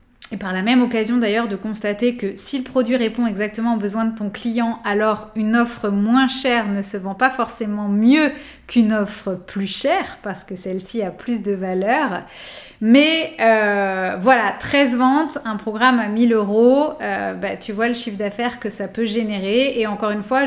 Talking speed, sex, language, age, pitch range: 195 wpm, female, French, 20-39, 215-255 Hz